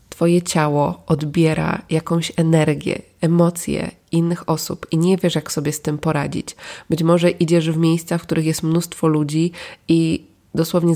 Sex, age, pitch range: female, 20-39, 150-175 Hz